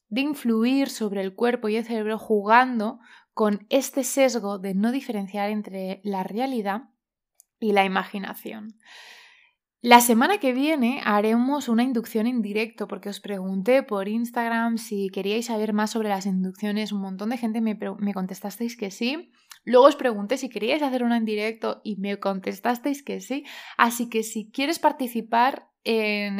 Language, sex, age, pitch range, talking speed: Spanish, female, 20-39, 200-245 Hz, 160 wpm